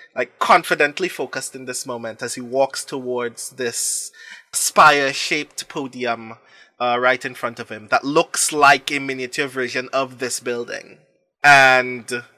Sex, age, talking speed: male, 20-39, 140 wpm